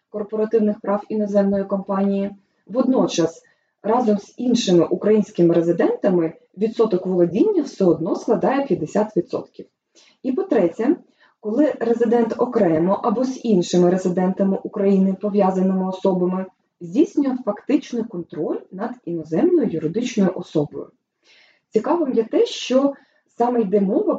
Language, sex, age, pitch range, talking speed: Ukrainian, female, 20-39, 185-255 Hz, 105 wpm